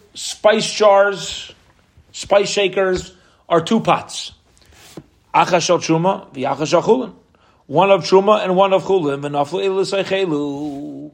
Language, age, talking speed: English, 40-59, 100 wpm